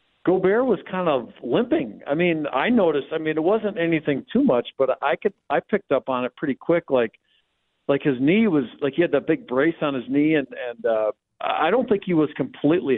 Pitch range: 135-170 Hz